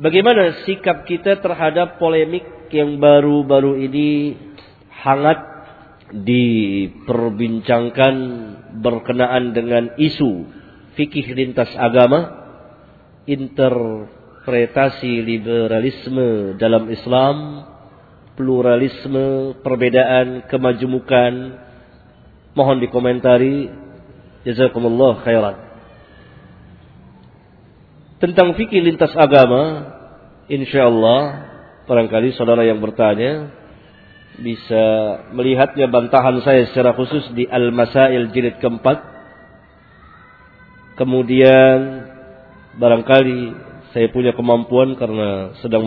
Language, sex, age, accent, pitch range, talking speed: Indonesian, male, 40-59, native, 120-145 Hz, 70 wpm